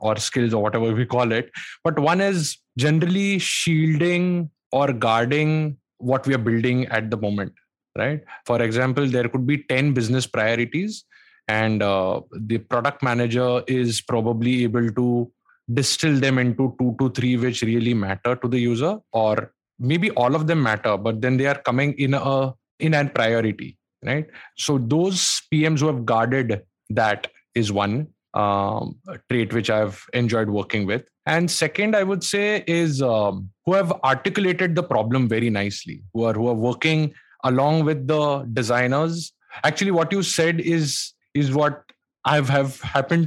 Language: English